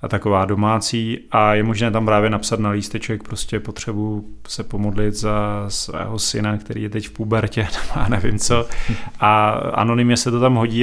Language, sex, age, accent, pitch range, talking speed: Czech, male, 30-49, native, 105-120 Hz, 175 wpm